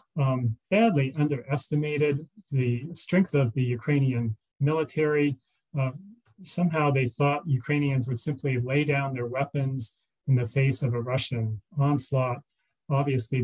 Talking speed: 125 wpm